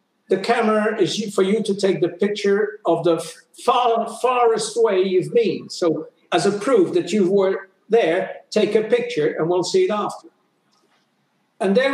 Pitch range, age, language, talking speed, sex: 185-245 Hz, 60-79, English, 170 wpm, male